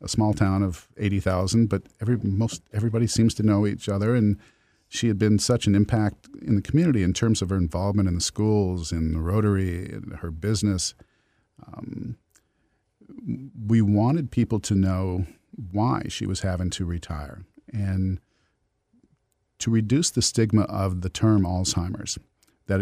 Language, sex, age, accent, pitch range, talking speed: English, male, 50-69, American, 90-110 Hz, 160 wpm